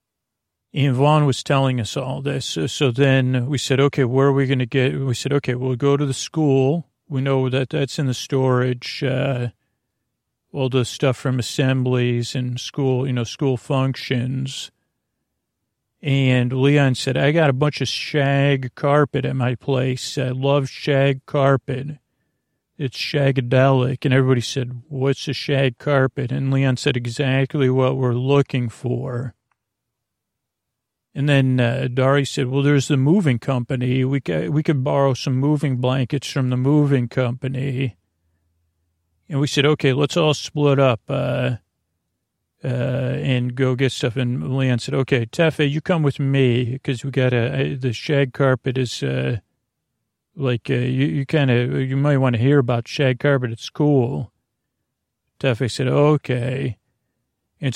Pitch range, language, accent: 125-140 Hz, English, American